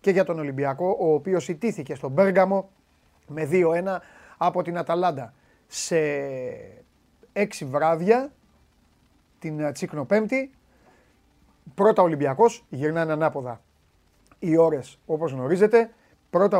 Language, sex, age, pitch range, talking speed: Greek, male, 30-49, 140-190 Hz, 105 wpm